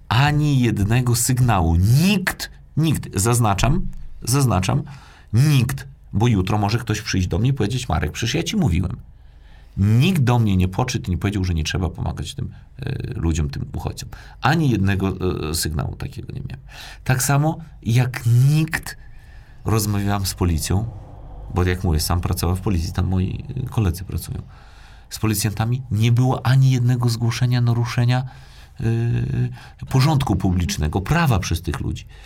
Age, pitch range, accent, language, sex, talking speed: 40-59, 95-135 Hz, native, Polish, male, 145 wpm